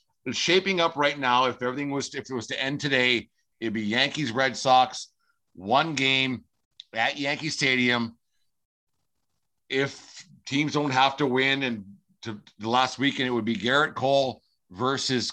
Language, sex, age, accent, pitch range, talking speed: English, male, 50-69, American, 115-145 Hz, 165 wpm